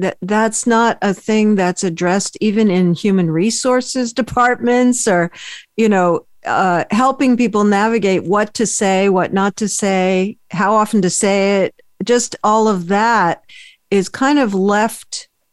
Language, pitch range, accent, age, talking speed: English, 180-215 Hz, American, 50-69, 150 wpm